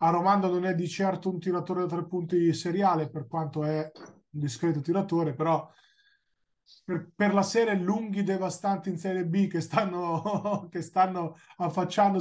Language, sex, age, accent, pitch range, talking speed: Italian, male, 20-39, native, 150-175 Hz, 165 wpm